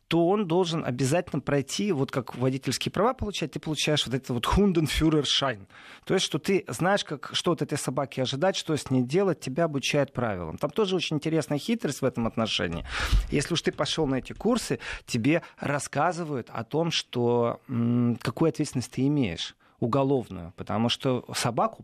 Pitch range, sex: 125-175 Hz, male